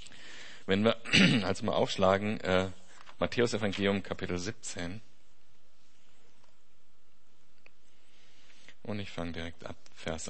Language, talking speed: German, 95 wpm